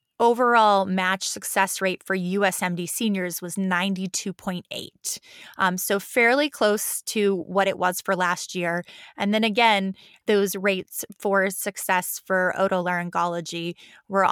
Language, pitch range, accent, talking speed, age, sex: English, 185-230 Hz, American, 120 wpm, 20-39, female